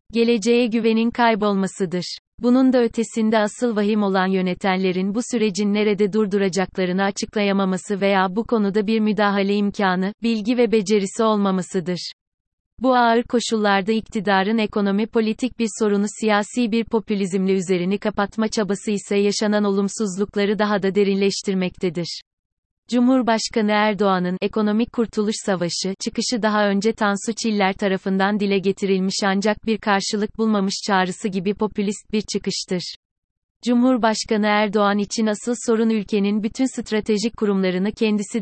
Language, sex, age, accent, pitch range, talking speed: Turkish, female, 30-49, native, 195-225 Hz, 120 wpm